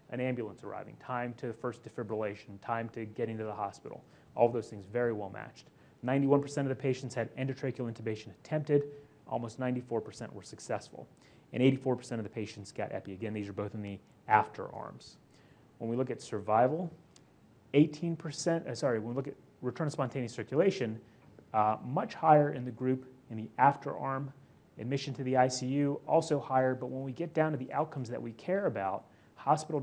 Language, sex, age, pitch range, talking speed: English, male, 30-49, 115-145 Hz, 185 wpm